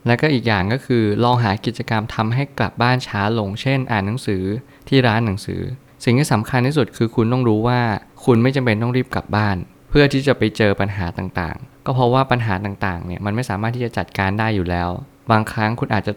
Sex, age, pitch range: male, 20-39, 100-120 Hz